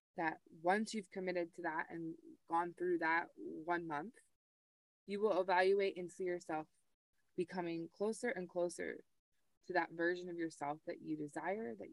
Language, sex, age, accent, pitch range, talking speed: English, female, 20-39, American, 165-200 Hz, 155 wpm